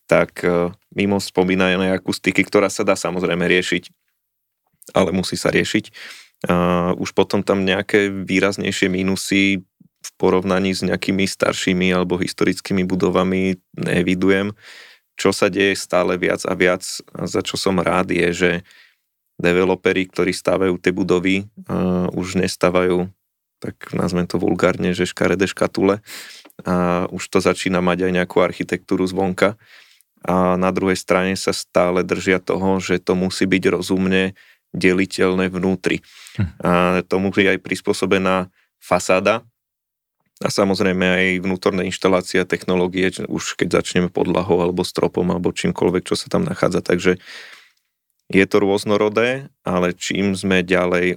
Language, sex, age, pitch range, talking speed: Slovak, male, 20-39, 90-95 Hz, 135 wpm